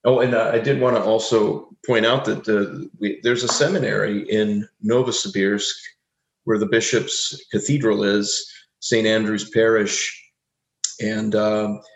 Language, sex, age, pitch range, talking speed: English, male, 40-59, 105-120 Hz, 140 wpm